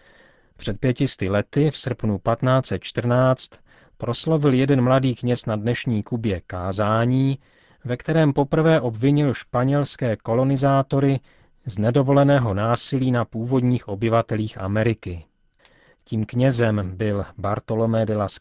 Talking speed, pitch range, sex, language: 110 wpm, 105-130 Hz, male, Czech